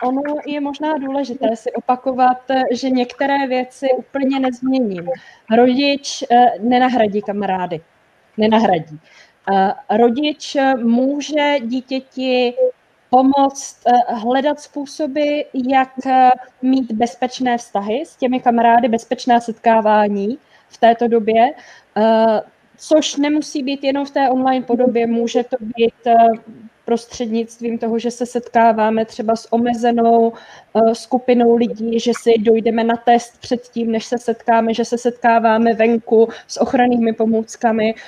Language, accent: Czech, native